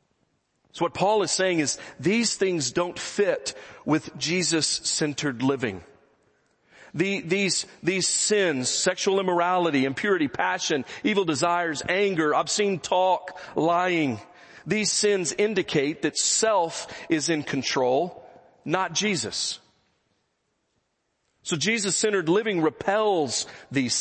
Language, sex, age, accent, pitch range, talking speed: English, male, 40-59, American, 155-195 Hz, 100 wpm